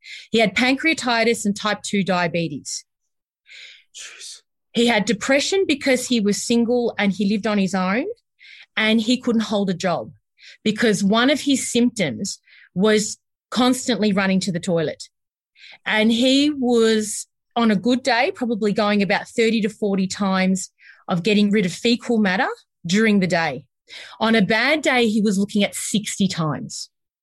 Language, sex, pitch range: English, female, 195-240 Hz